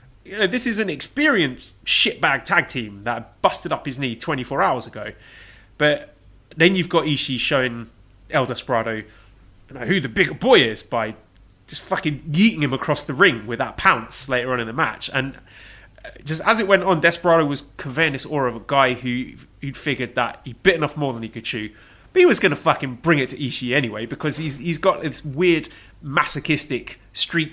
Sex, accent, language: male, British, English